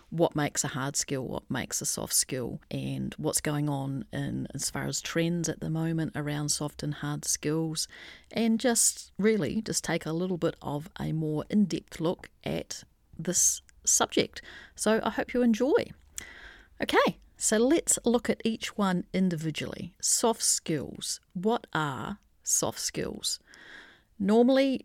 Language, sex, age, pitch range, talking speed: English, female, 40-59, 155-205 Hz, 150 wpm